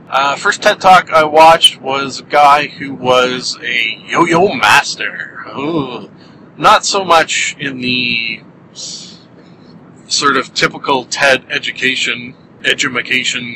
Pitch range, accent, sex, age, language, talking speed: 130-165 Hz, American, male, 30-49, English, 115 wpm